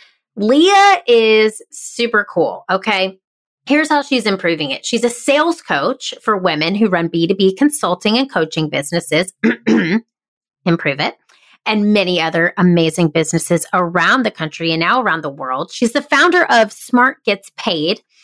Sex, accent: female, American